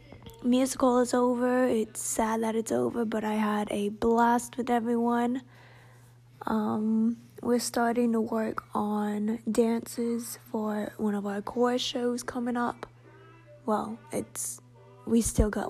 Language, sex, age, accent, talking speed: English, female, 20-39, American, 135 wpm